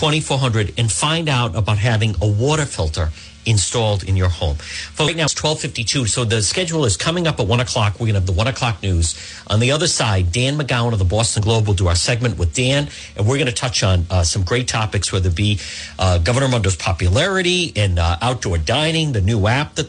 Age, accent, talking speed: 50-69, American, 225 wpm